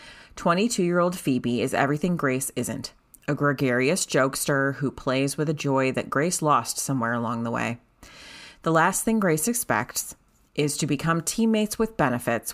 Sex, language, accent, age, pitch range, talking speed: female, English, American, 30-49, 130-165 Hz, 155 wpm